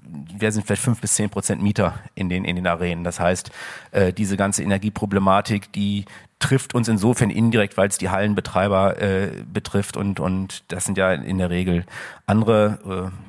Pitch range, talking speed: 95-110 Hz, 180 wpm